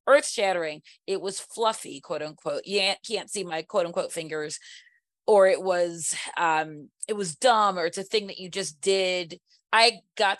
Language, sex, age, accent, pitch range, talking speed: English, female, 30-49, American, 170-210 Hz, 180 wpm